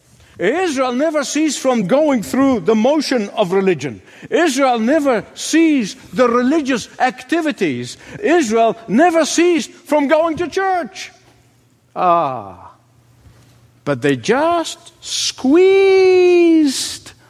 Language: English